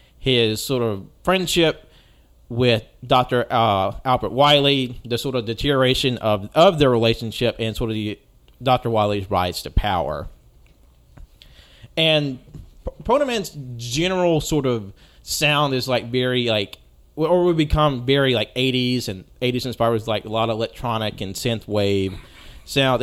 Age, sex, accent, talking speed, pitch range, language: 30-49, male, American, 145 wpm, 110-140 Hz, English